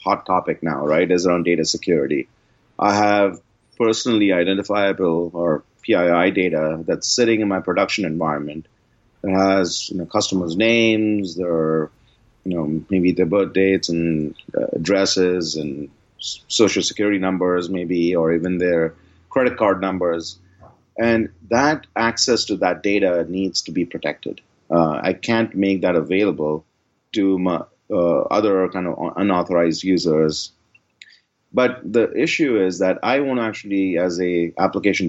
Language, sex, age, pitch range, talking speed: English, male, 30-49, 85-105 Hz, 140 wpm